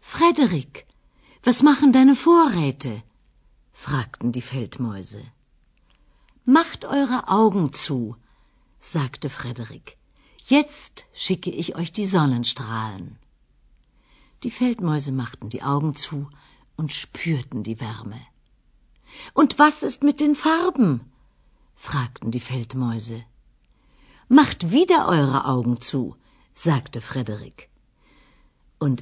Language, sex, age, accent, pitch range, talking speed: Romanian, female, 50-69, German, 125-195 Hz, 95 wpm